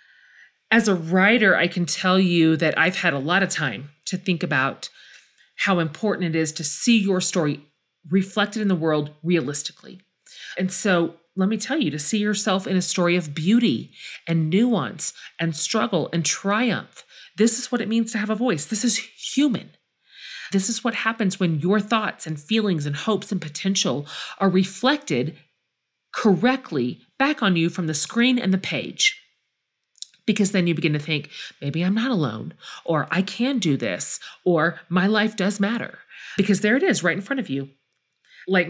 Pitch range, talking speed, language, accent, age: 165-215 Hz, 180 wpm, English, American, 40-59